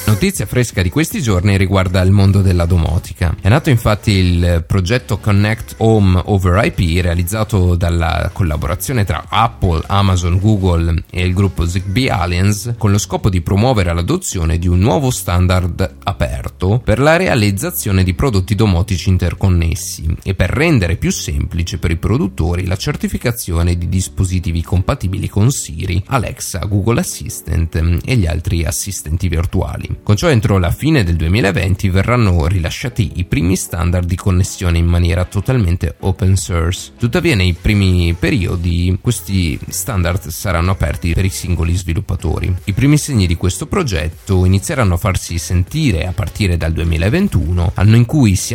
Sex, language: male, Italian